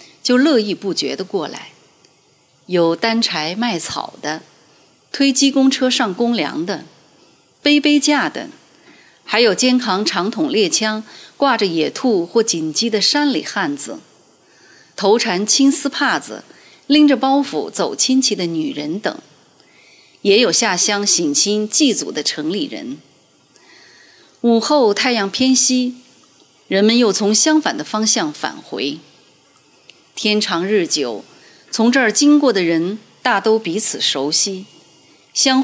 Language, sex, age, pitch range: Chinese, female, 30-49, 195-275 Hz